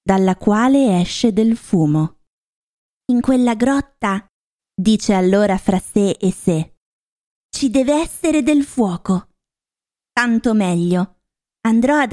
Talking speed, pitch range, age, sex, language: 115 wpm, 190-270 Hz, 20-39, female, Italian